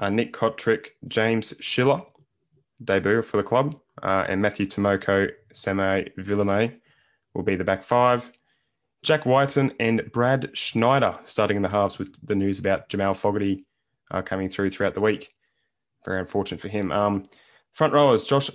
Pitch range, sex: 100-130 Hz, male